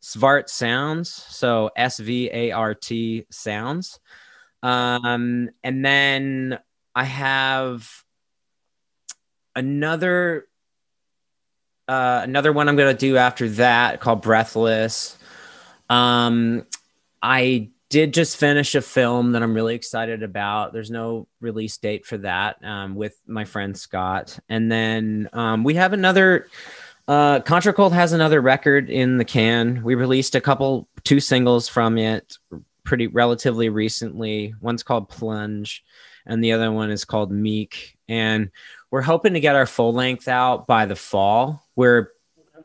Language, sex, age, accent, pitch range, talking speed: English, male, 20-39, American, 110-130 Hz, 130 wpm